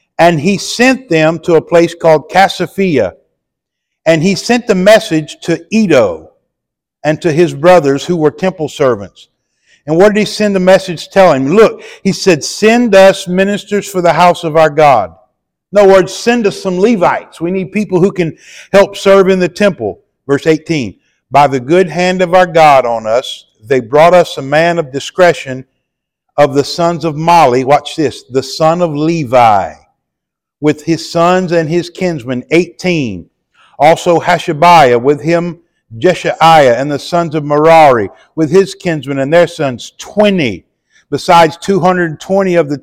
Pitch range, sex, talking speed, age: 160-195 Hz, male, 165 wpm, 50-69